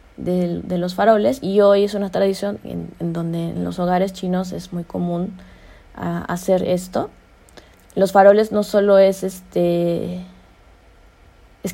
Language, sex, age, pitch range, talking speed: Spanish, female, 20-39, 170-195 Hz, 145 wpm